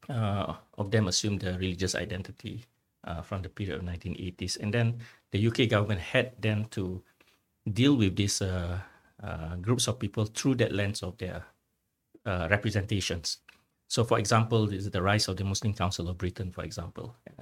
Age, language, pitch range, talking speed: 50-69, English, 95-110 Hz, 175 wpm